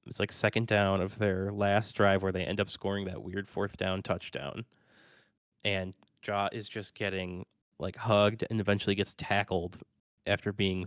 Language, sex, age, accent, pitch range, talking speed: English, male, 20-39, American, 95-110 Hz, 170 wpm